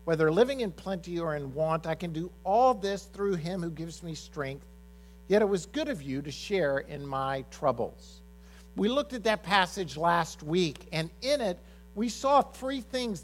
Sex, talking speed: male, 195 wpm